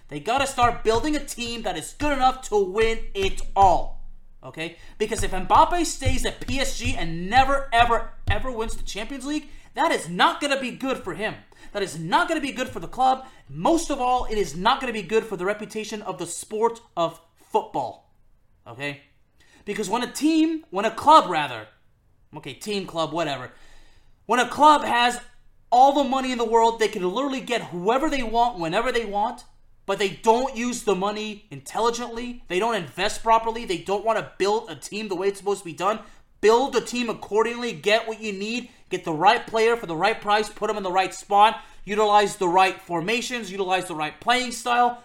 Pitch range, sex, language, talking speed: 185-245 Hz, male, English, 210 wpm